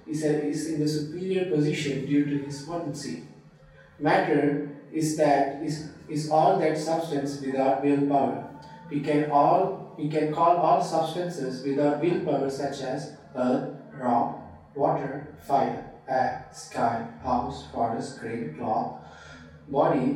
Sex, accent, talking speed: male, Indian, 130 wpm